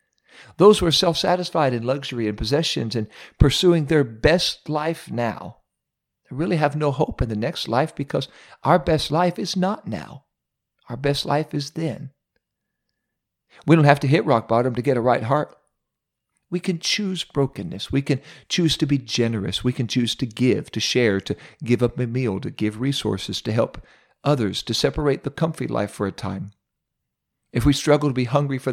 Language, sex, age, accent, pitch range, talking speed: English, male, 50-69, American, 110-145 Hz, 190 wpm